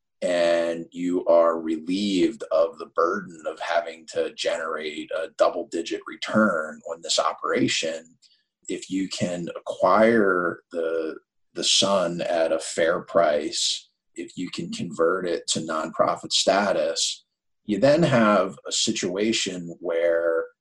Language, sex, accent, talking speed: English, male, American, 125 wpm